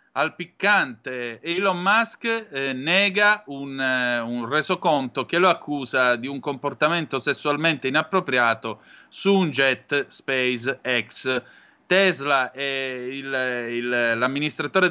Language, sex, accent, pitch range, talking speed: Italian, male, native, 130-170 Hz, 110 wpm